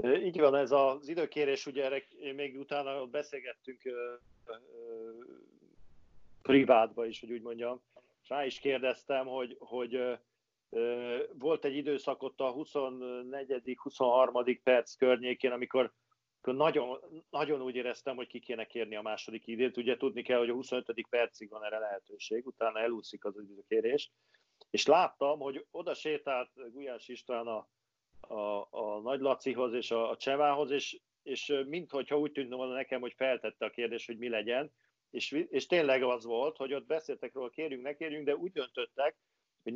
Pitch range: 120-145 Hz